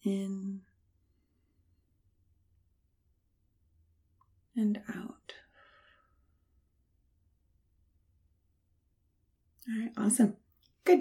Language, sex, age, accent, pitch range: English, female, 30-49, American, 160-215 Hz